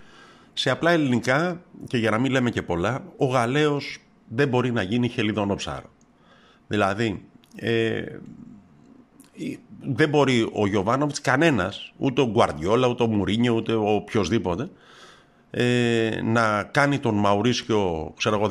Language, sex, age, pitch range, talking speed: Greek, male, 50-69, 100-130 Hz, 120 wpm